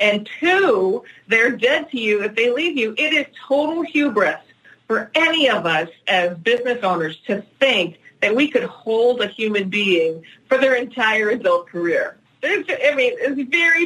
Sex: female